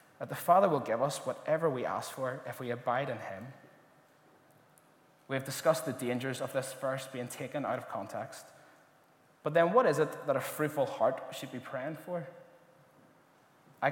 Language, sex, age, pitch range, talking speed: English, male, 20-39, 130-155 Hz, 180 wpm